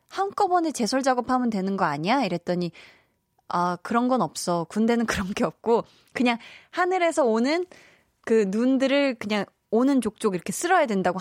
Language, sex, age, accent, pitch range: Korean, female, 20-39, native, 200-295 Hz